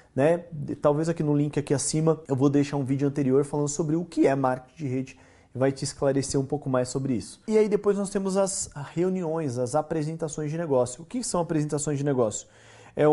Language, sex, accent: Portuguese, male, Brazilian